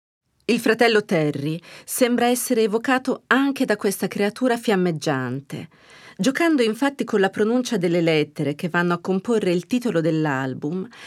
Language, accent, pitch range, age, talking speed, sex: Italian, native, 160-235 Hz, 40-59, 135 wpm, female